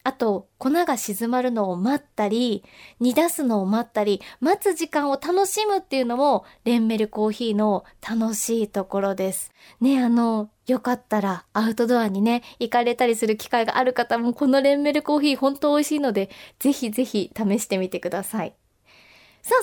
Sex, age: female, 20-39